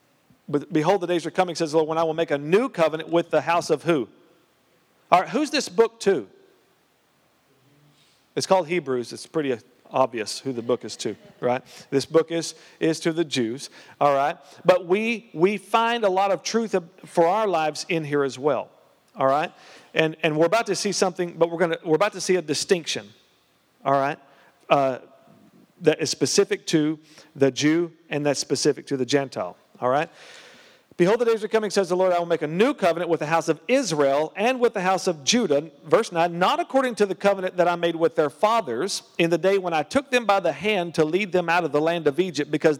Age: 50-69